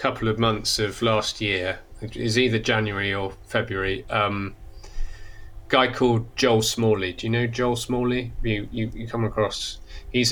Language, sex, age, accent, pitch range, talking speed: English, male, 30-49, British, 90-115 Hz, 155 wpm